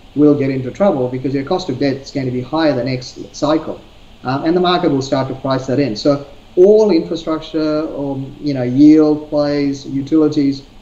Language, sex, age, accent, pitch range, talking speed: English, male, 40-59, Australian, 120-145 Hz, 190 wpm